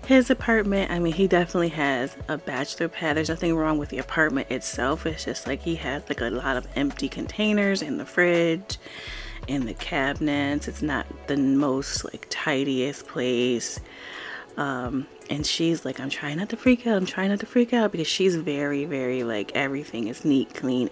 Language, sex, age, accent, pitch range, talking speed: English, female, 20-39, American, 145-190 Hz, 190 wpm